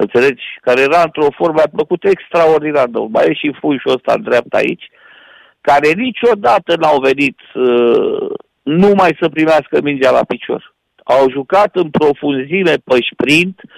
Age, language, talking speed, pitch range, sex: 50-69, Romanian, 135 wpm, 150-250 Hz, male